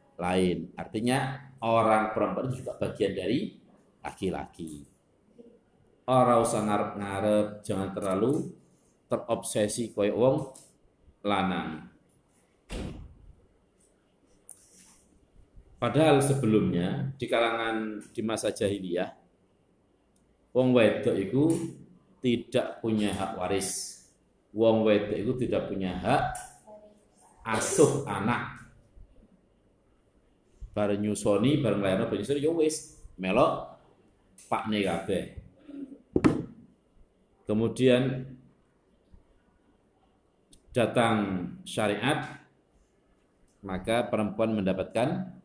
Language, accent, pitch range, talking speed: Indonesian, native, 95-125 Hz, 75 wpm